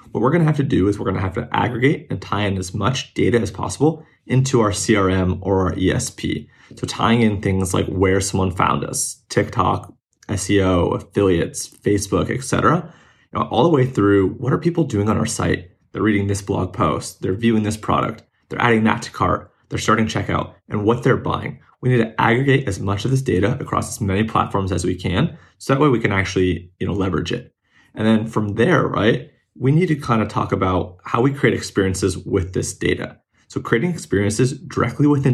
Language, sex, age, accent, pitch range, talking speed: English, male, 20-39, American, 95-120 Hz, 205 wpm